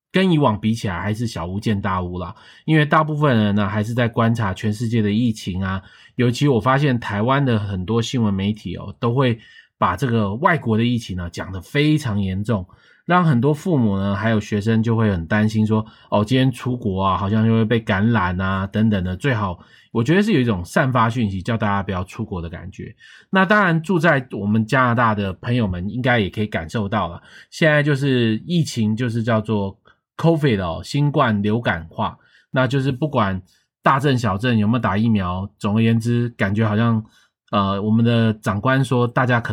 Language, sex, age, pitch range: Chinese, male, 20-39, 105-130 Hz